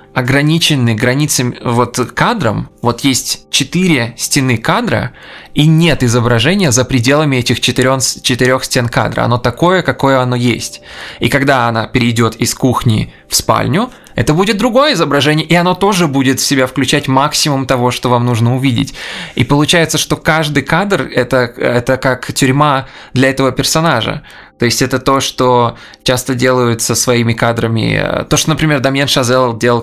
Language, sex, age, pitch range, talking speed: Russian, male, 20-39, 115-140 Hz, 155 wpm